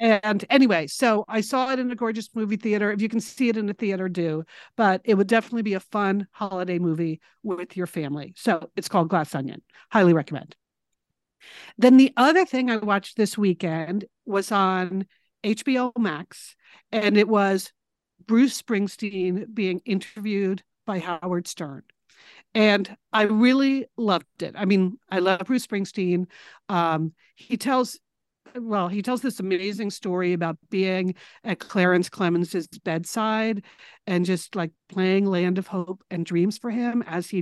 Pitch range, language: 180-230 Hz, English